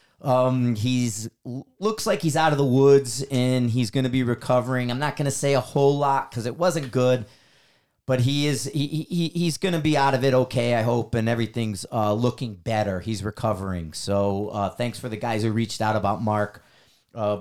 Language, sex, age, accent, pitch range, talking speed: English, male, 30-49, American, 115-140 Hz, 210 wpm